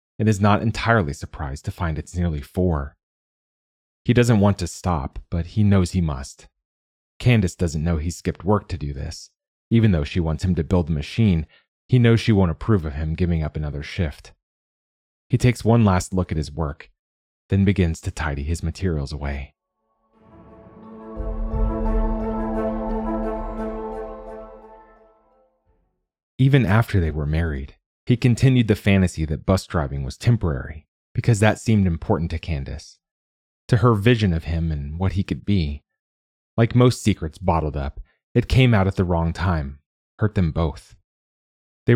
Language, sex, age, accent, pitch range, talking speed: English, male, 30-49, American, 75-110 Hz, 155 wpm